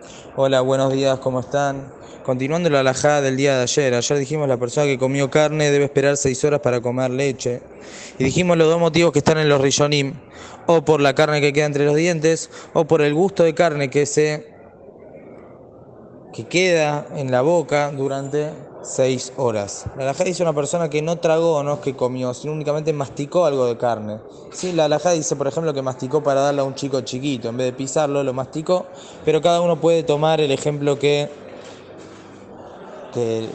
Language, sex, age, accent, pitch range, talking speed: Spanish, male, 20-39, Argentinian, 135-160 Hz, 195 wpm